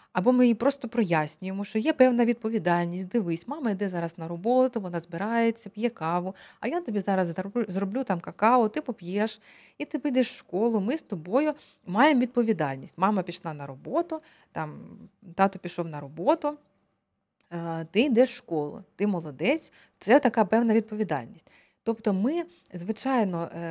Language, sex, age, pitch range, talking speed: Ukrainian, female, 20-39, 180-240 Hz, 150 wpm